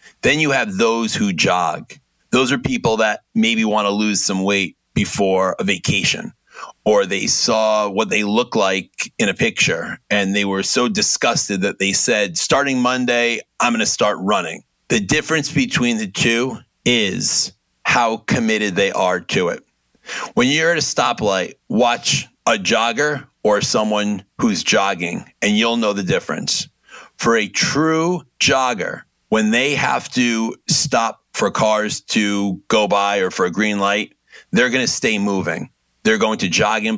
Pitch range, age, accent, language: 100-125 Hz, 30-49, American, English